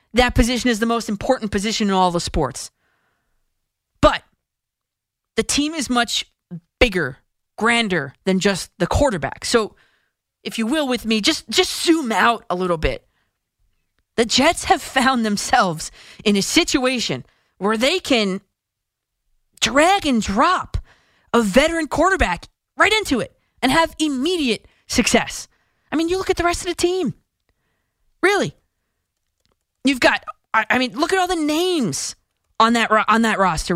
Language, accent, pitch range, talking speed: English, American, 195-300 Hz, 150 wpm